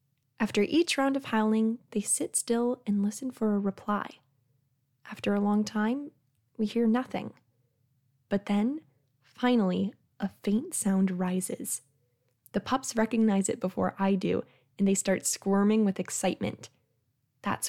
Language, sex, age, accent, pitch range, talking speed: English, female, 10-29, American, 185-230 Hz, 140 wpm